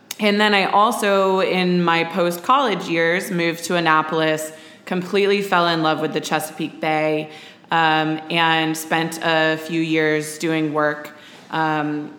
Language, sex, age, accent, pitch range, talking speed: English, female, 20-39, American, 155-185 Hz, 140 wpm